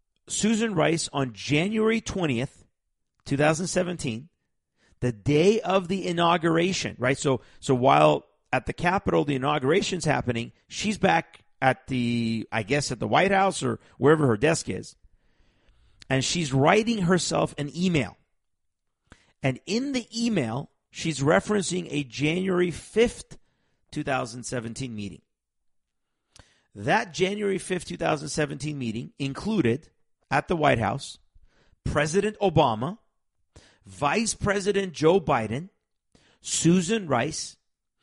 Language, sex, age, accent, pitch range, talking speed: English, male, 50-69, American, 125-180 Hz, 110 wpm